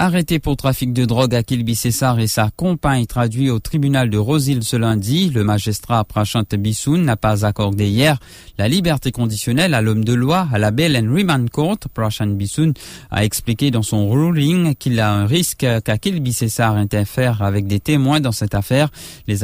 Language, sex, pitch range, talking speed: English, male, 105-130 Hz, 180 wpm